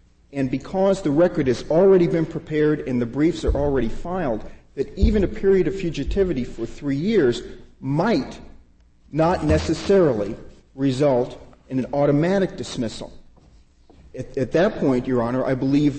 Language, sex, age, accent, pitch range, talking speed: English, male, 40-59, American, 115-155 Hz, 145 wpm